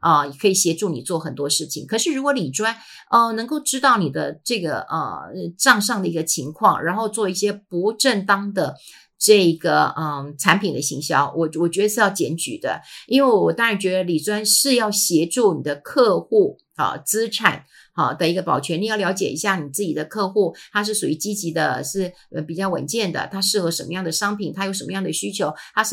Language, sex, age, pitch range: Chinese, female, 50-69, 170-230 Hz